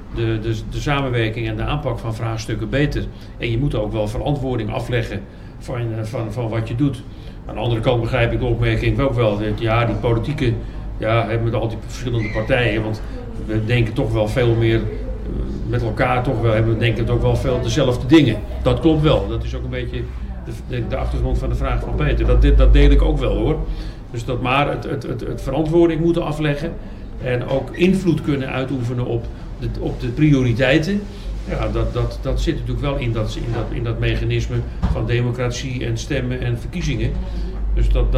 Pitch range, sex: 115-135 Hz, male